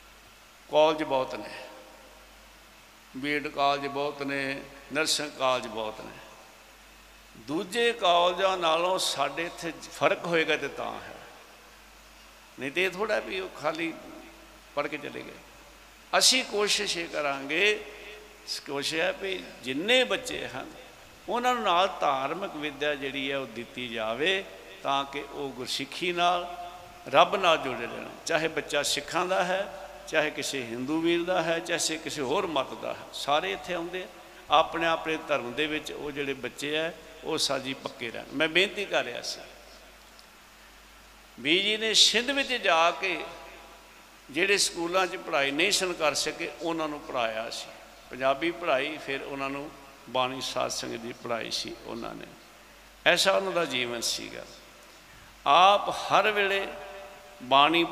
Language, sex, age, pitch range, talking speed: Punjabi, male, 60-79, 140-185 Hz, 130 wpm